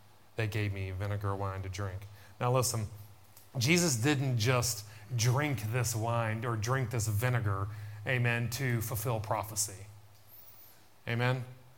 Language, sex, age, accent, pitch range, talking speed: English, male, 30-49, American, 115-155 Hz, 120 wpm